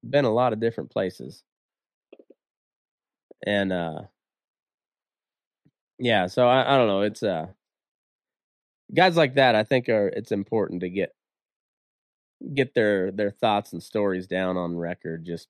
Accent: American